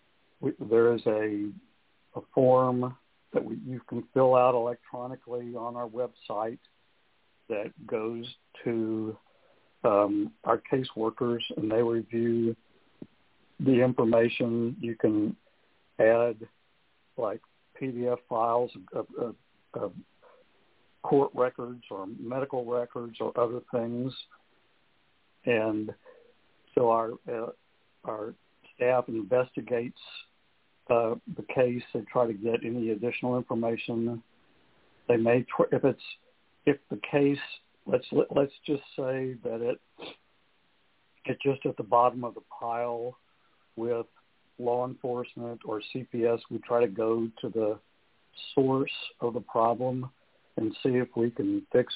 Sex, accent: male, American